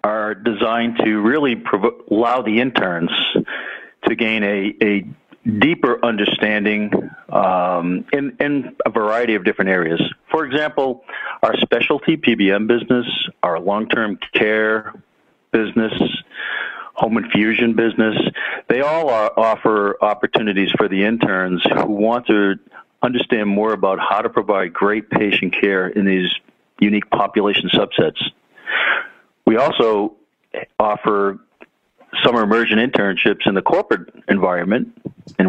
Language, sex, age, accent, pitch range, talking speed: English, male, 50-69, American, 100-120 Hz, 115 wpm